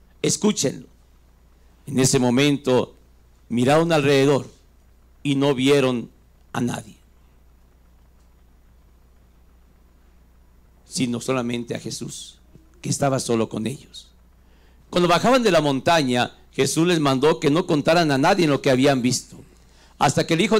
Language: Spanish